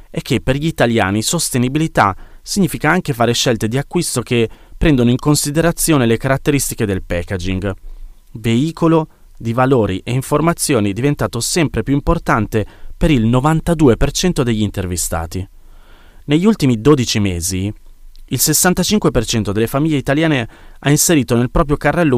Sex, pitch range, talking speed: male, 105-145 Hz, 130 wpm